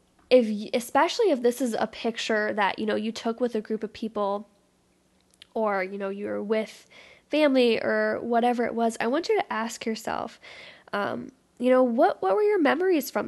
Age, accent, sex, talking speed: 10-29, American, female, 190 wpm